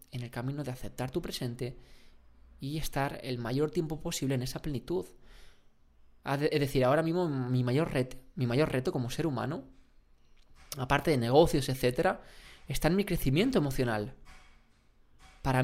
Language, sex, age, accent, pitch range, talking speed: Spanish, male, 20-39, Spanish, 125-155 Hz, 140 wpm